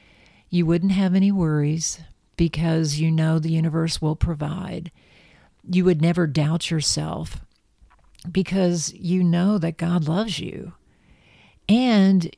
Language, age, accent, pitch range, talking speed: English, 50-69, American, 155-175 Hz, 120 wpm